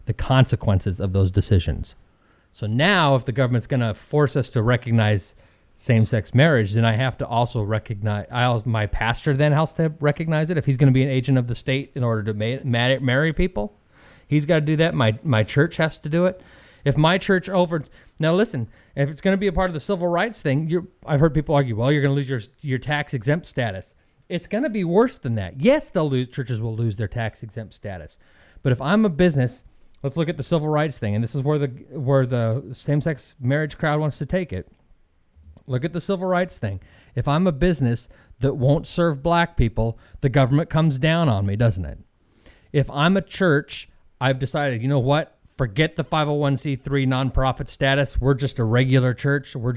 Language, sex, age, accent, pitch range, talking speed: English, male, 30-49, American, 115-150 Hz, 210 wpm